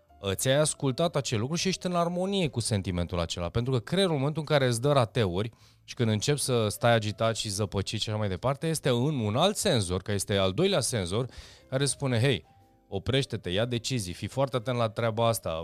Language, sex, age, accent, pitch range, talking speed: Romanian, male, 20-39, native, 95-135 Hz, 210 wpm